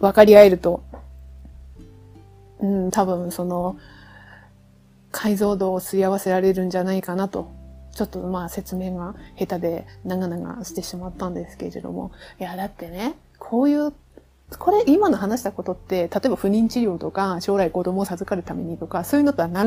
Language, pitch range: Japanese, 180-235 Hz